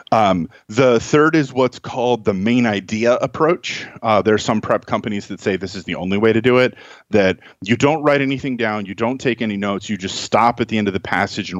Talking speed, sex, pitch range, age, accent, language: 245 wpm, male, 95-120 Hz, 30-49, American, English